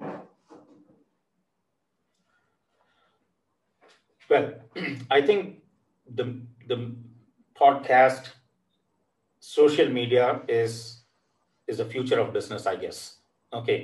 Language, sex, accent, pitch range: English, male, Indian, 110-140 Hz